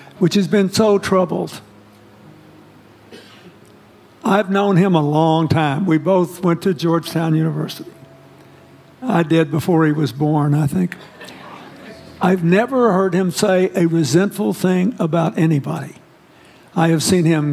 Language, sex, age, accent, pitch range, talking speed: English, male, 60-79, American, 165-185 Hz, 135 wpm